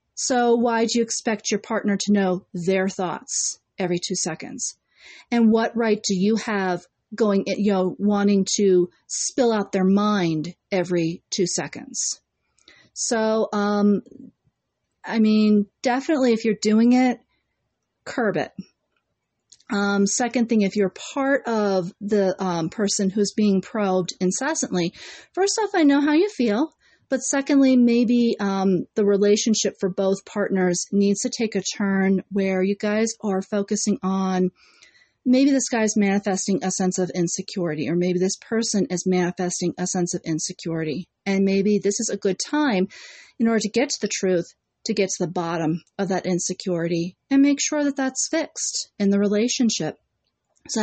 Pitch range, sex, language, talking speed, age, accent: 185-230 Hz, female, English, 160 wpm, 40-59, American